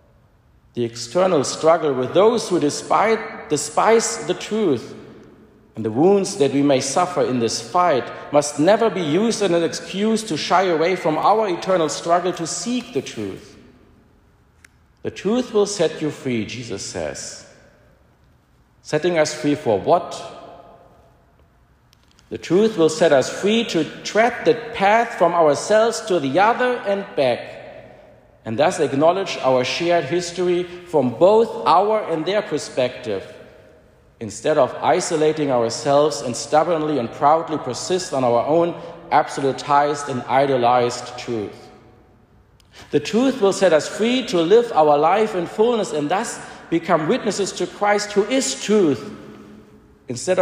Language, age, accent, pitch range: English, 50-69, German, 135-200 Hz